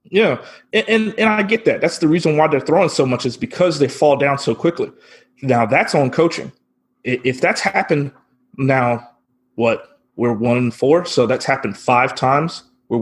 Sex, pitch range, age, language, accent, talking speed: male, 125-175 Hz, 30-49, English, American, 180 wpm